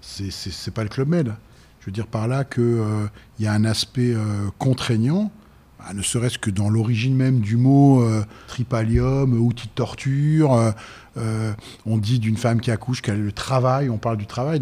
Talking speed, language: 220 wpm, French